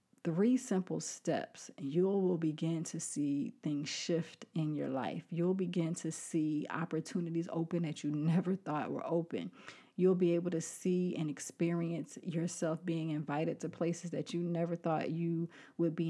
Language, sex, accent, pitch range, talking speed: English, female, American, 160-185 Hz, 165 wpm